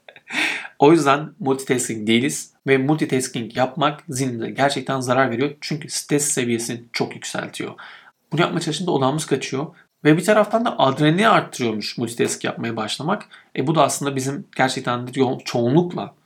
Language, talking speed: Turkish, 135 wpm